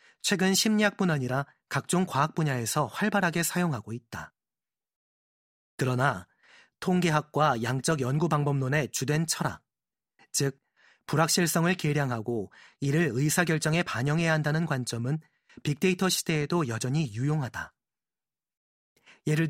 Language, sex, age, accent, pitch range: Korean, male, 30-49, native, 135-175 Hz